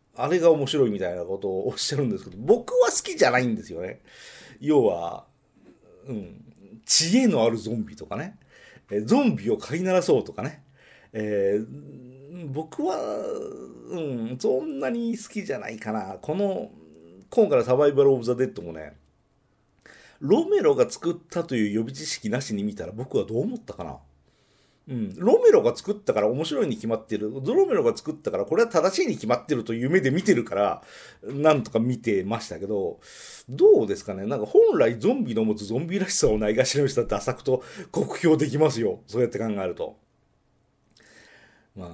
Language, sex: Japanese, male